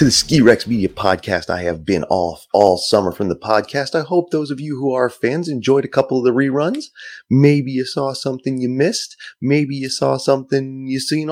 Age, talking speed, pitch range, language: 30-49, 215 wpm, 90-135 Hz, English